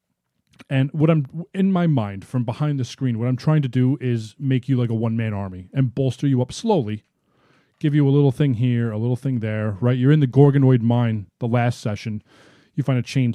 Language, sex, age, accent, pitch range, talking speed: English, male, 30-49, American, 115-145 Hz, 225 wpm